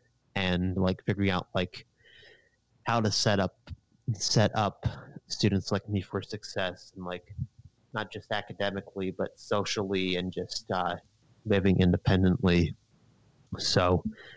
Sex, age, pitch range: male, 30-49, 90-110 Hz